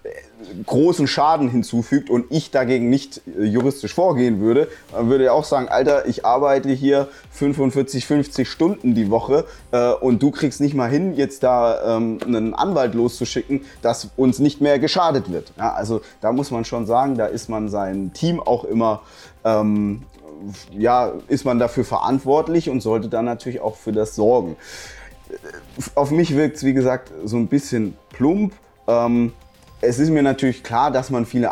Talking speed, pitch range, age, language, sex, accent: 170 wpm, 105-135 Hz, 30-49, German, male, German